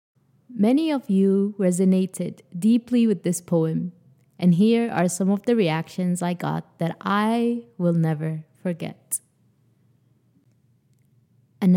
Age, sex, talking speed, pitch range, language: 20-39, female, 115 wpm, 140-195 Hz, English